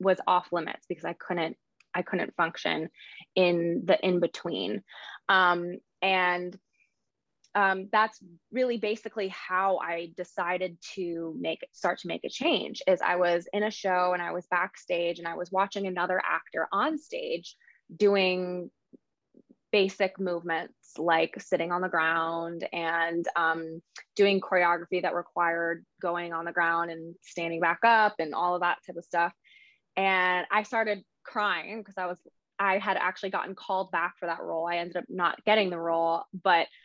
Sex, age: female, 20-39